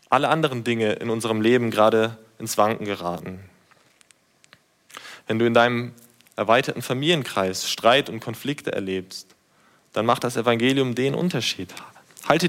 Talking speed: 130 wpm